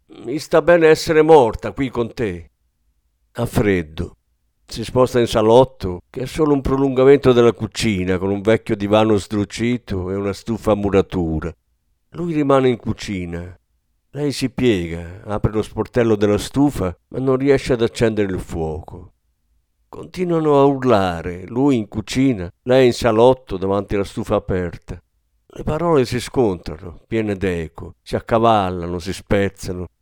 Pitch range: 95-130 Hz